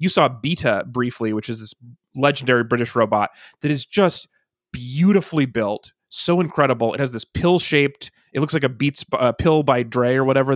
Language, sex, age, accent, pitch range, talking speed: English, male, 30-49, American, 120-160 Hz, 190 wpm